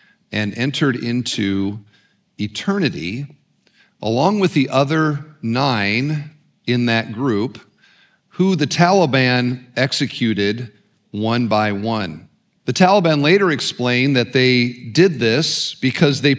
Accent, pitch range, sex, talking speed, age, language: American, 120-175 Hz, male, 105 wpm, 40-59, English